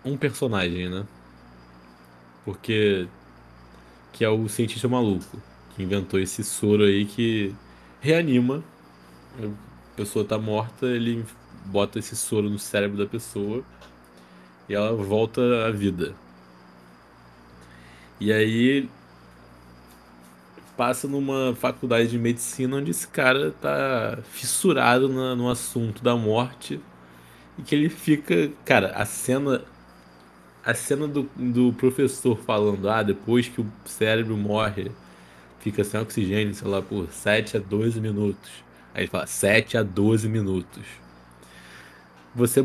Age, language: 20-39, Portuguese